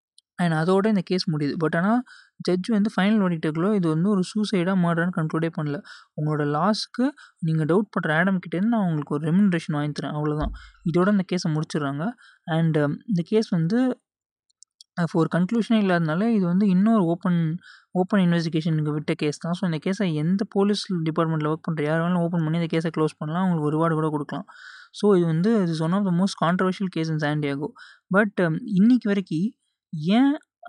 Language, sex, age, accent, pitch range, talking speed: Tamil, male, 20-39, native, 160-200 Hz, 185 wpm